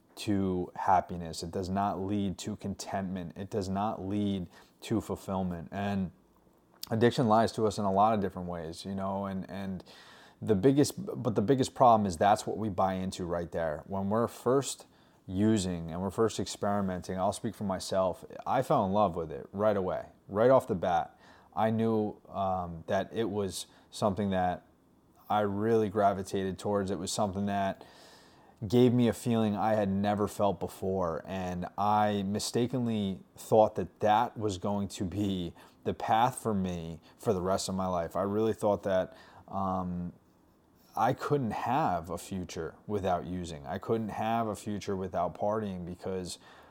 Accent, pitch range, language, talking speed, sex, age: American, 90-105 Hz, English, 170 wpm, male, 30-49